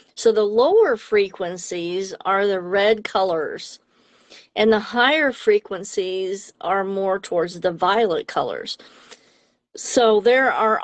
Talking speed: 115 wpm